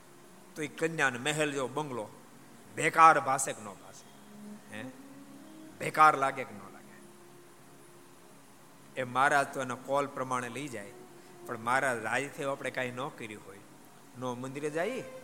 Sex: male